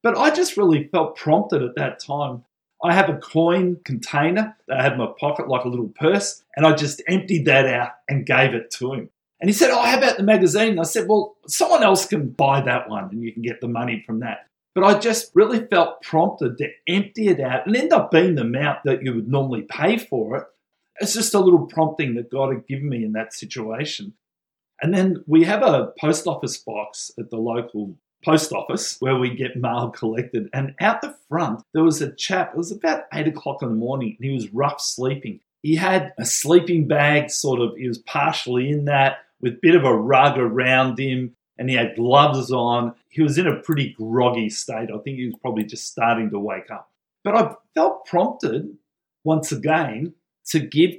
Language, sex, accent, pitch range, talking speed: English, male, Australian, 120-170 Hz, 215 wpm